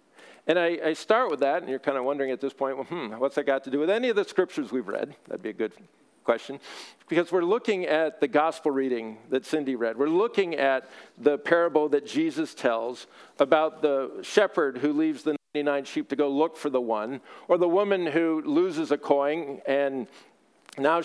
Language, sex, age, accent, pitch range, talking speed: English, male, 50-69, American, 135-175 Hz, 210 wpm